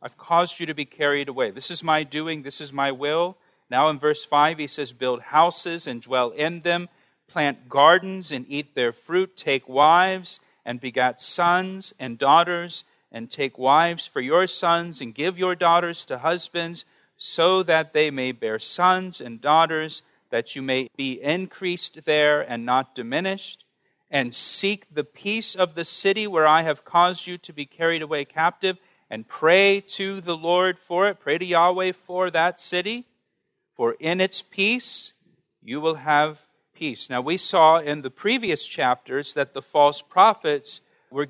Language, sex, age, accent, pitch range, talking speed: English, male, 40-59, American, 145-180 Hz, 175 wpm